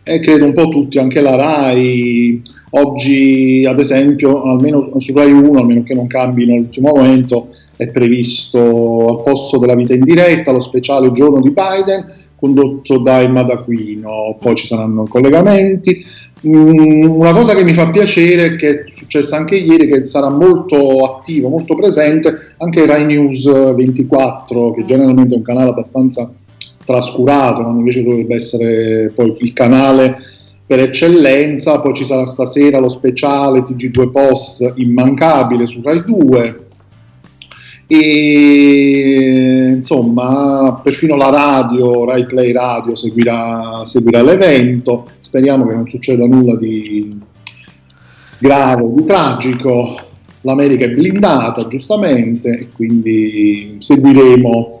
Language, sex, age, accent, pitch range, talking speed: Italian, male, 50-69, native, 120-145 Hz, 130 wpm